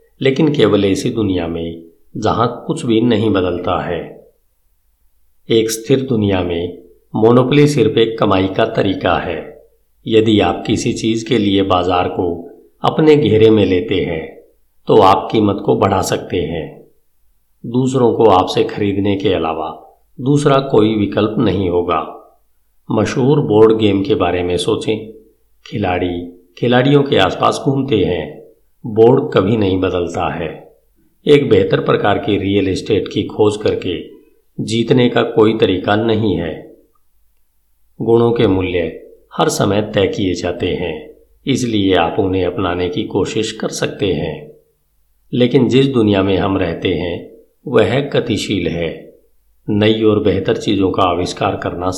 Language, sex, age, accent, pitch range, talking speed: Hindi, male, 50-69, native, 90-125 Hz, 140 wpm